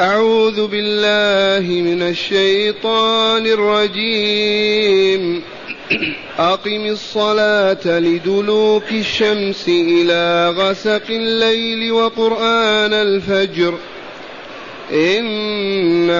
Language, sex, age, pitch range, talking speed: Arabic, male, 30-49, 190-215 Hz, 55 wpm